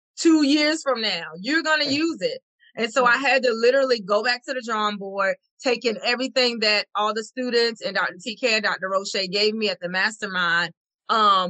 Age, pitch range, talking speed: 30-49, 200-260 Hz, 205 wpm